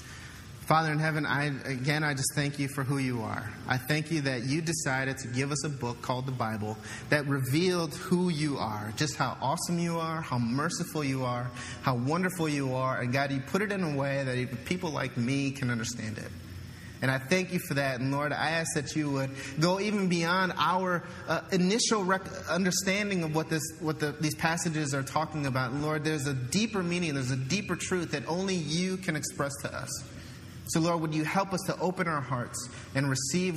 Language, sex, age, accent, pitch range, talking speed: English, male, 30-49, American, 130-165 Hz, 215 wpm